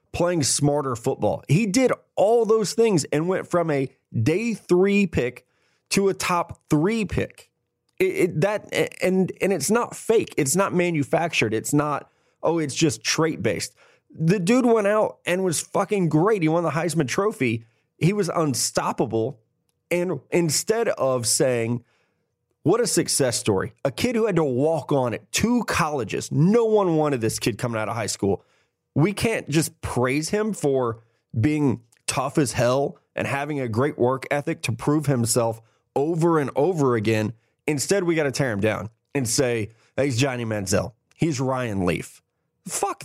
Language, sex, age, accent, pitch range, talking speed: English, male, 30-49, American, 120-175 Hz, 165 wpm